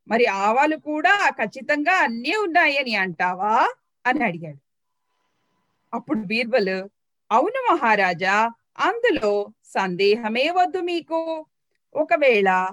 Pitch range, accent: 190-305 Hz, native